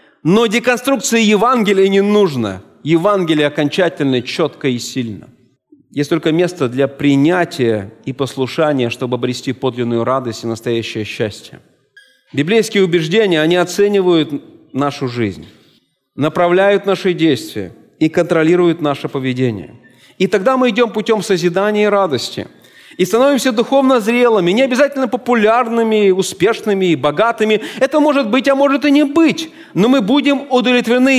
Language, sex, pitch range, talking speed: Russian, male, 150-225 Hz, 130 wpm